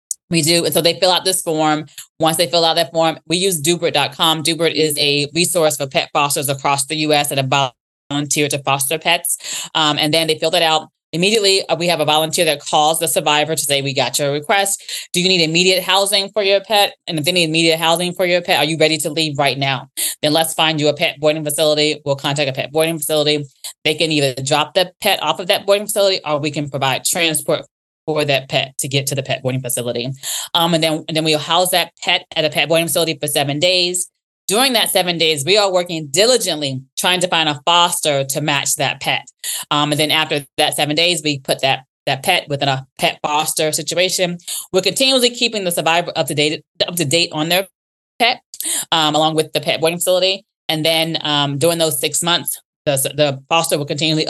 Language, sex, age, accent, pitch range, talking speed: English, female, 20-39, American, 150-175 Hz, 225 wpm